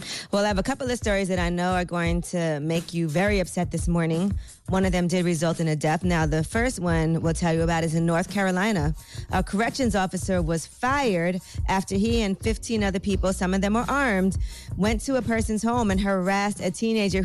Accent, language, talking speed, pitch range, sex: American, English, 225 wpm, 170-195 Hz, female